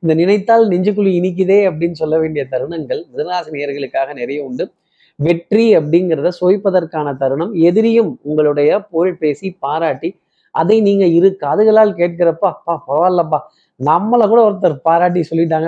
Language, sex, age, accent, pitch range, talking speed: Tamil, male, 20-39, native, 155-190 Hz, 120 wpm